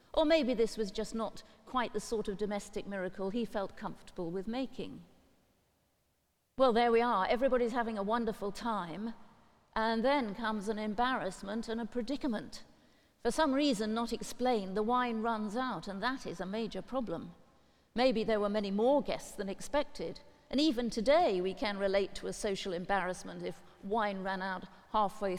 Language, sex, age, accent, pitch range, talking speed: English, female, 50-69, British, 195-245 Hz, 170 wpm